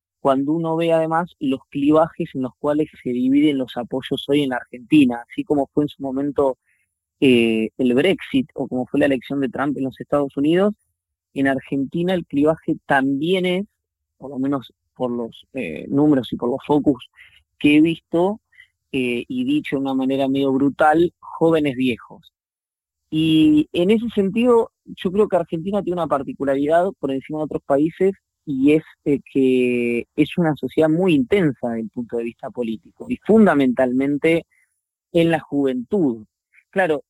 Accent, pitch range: Argentinian, 125-165 Hz